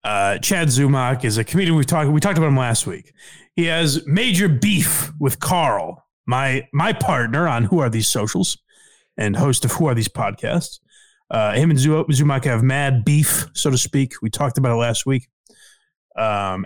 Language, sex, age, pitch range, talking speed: English, male, 20-39, 130-175 Hz, 185 wpm